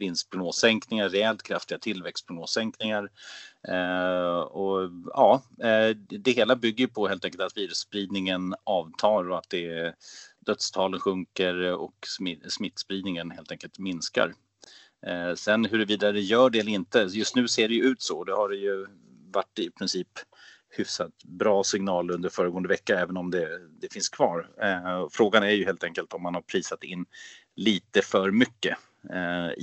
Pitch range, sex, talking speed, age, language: 90-110 Hz, male, 165 wpm, 30-49, Swedish